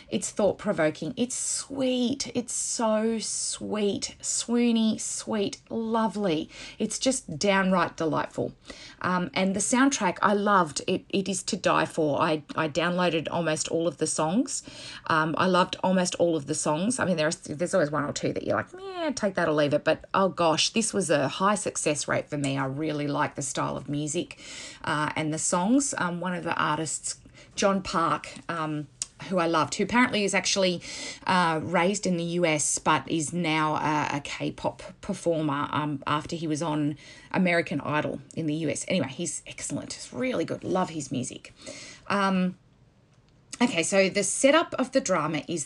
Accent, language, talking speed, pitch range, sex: Australian, English, 180 wpm, 150-195 Hz, female